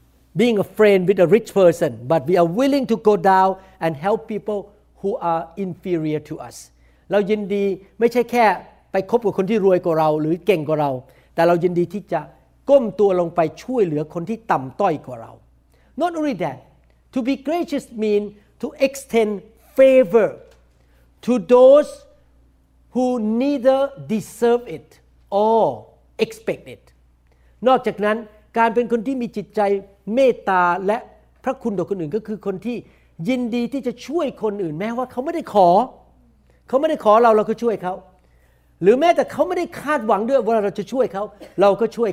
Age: 60-79